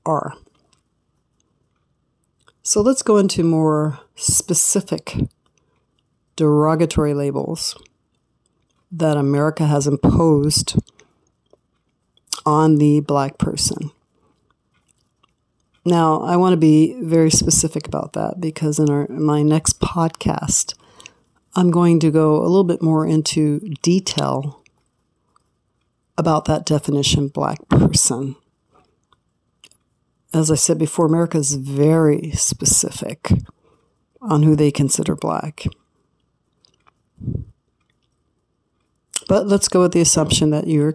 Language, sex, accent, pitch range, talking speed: English, female, American, 150-180 Hz, 100 wpm